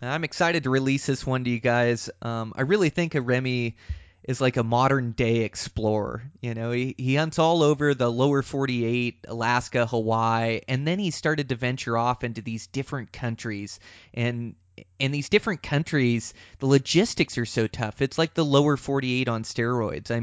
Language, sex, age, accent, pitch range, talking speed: English, male, 20-39, American, 115-140 Hz, 190 wpm